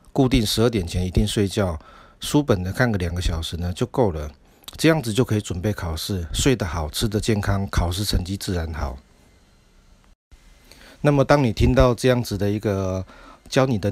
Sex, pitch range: male, 90-115 Hz